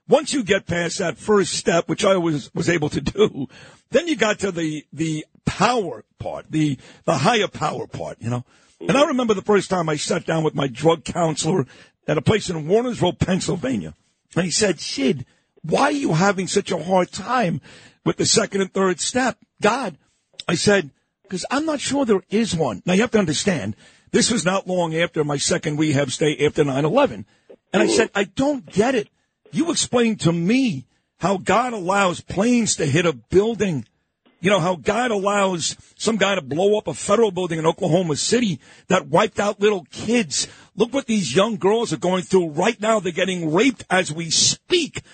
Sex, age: male, 50-69